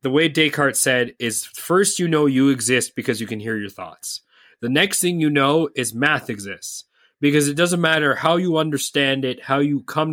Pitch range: 125-155 Hz